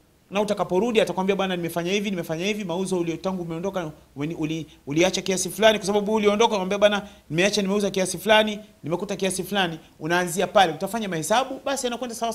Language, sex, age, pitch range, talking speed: Swahili, male, 40-59, 160-205 Hz, 165 wpm